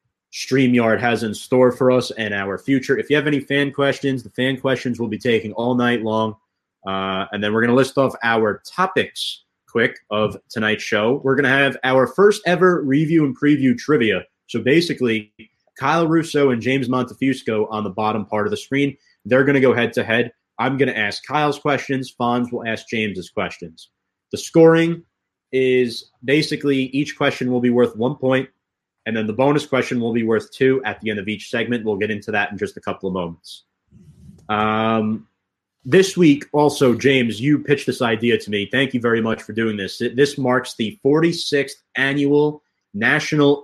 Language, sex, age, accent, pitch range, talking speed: English, male, 30-49, American, 105-135 Hz, 195 wpm